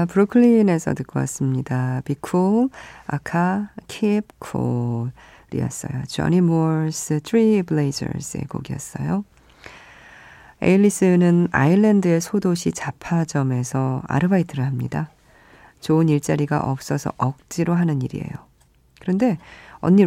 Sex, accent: female, native